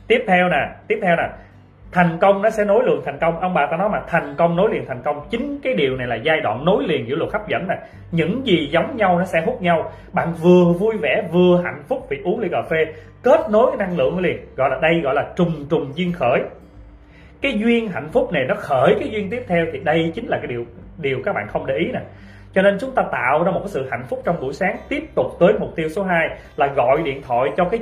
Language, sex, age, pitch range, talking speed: Vietnamese, male, 20-39, 150-205 Hz, 265 wpm